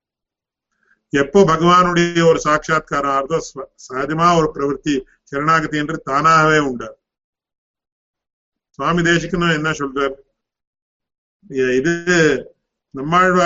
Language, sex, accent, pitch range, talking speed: English, male, Indian, 135-170 Hz, 70 wpm